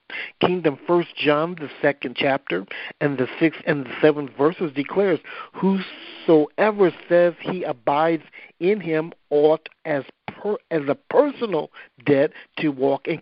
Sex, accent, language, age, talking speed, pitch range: male, American, English, 50-69, 130 wpm, 140-190 Hz